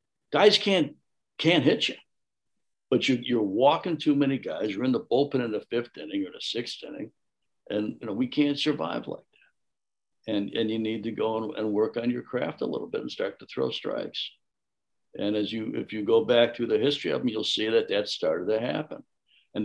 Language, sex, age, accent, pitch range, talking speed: English, male, 60-79, American, 105-140 Hz, 215 wpm